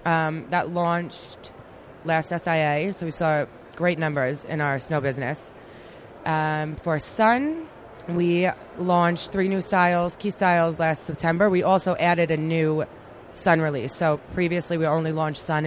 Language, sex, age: English, female, 20-39